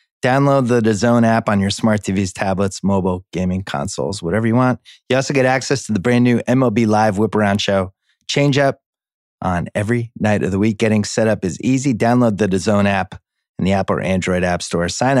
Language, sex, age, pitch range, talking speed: English, male, 30-49, 95-120 Hz, 205 wpm